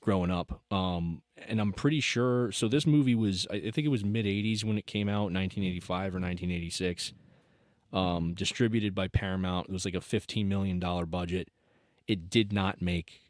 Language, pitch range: English, 90-110 Hz